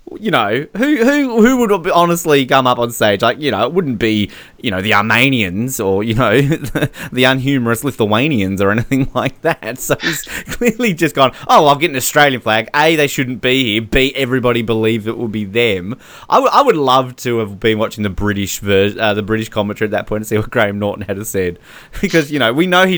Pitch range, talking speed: 105-135 Hz, 225 wpm